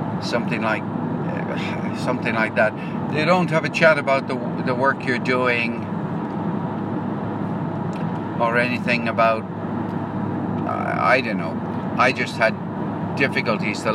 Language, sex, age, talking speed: English, male, 60-79, 120 wpm